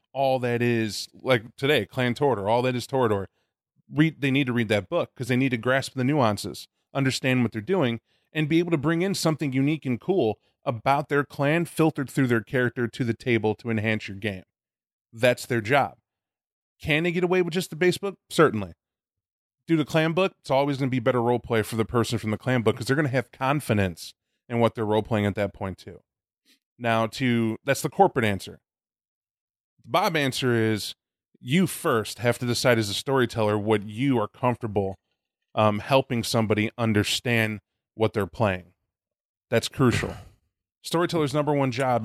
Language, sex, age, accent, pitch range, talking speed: English, male, 30-49, American, 110-135 Hz, 190 wpm